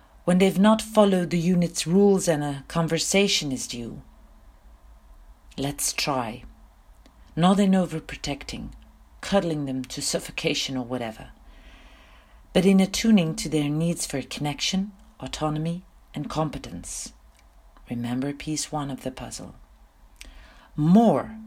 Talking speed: 115 wpm